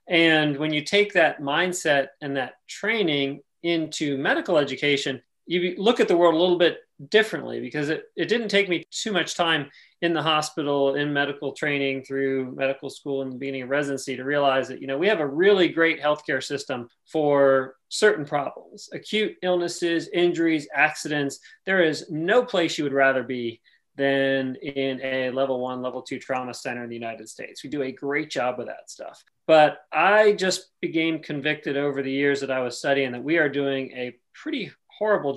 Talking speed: 190 wpm